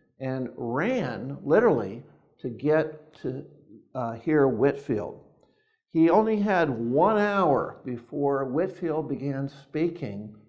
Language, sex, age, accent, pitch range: Chinese, male, 50-69, American, 120-165 Hz